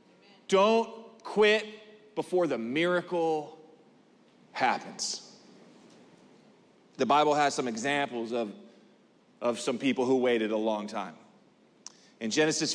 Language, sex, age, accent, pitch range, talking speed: English, male, 30-49, American, 165-240 Hz, 105 wpm